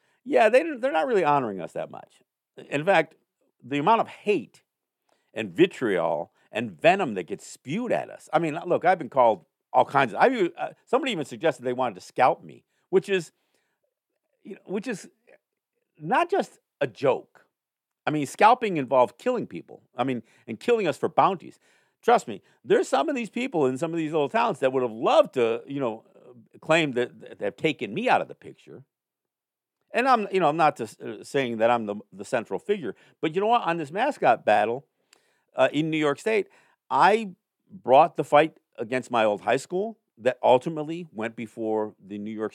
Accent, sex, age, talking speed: American, male, 50-69, 195 wpm